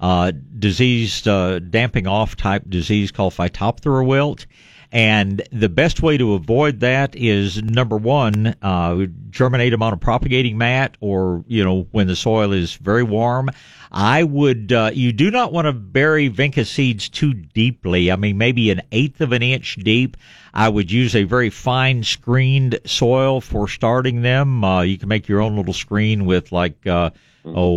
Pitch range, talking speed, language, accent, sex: 95-125 Hz, 175 wpm, English, American, male